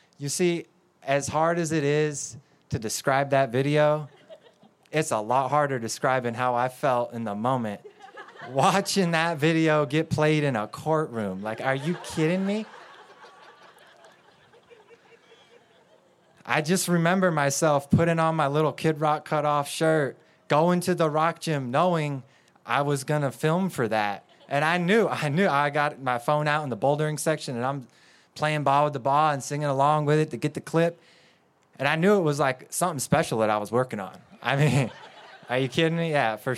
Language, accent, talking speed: English, American, 185 wpm